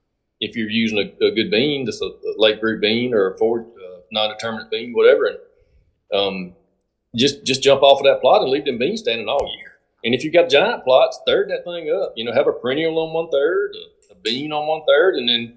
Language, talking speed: English, 235 wpm